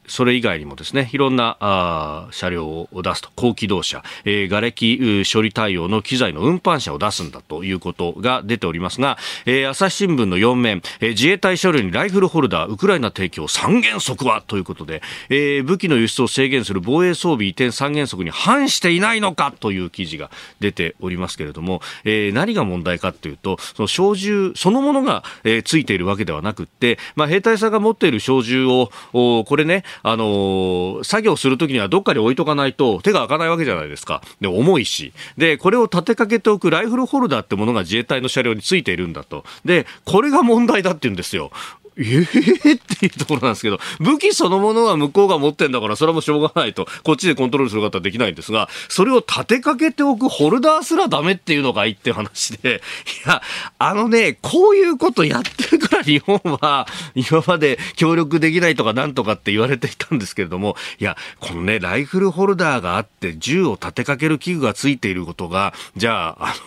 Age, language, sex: 40-59, Japanese, male